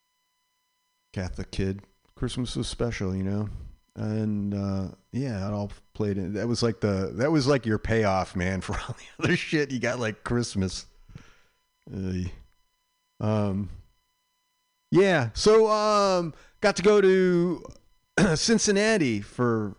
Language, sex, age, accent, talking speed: English, male, 40-59, American, 135 wpm